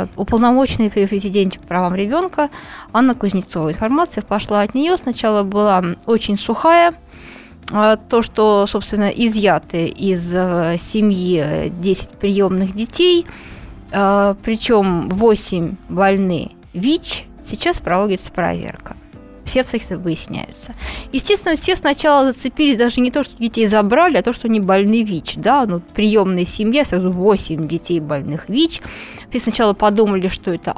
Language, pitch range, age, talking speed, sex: Russian, 195-260 Hz, 20-39, 125 wpm, female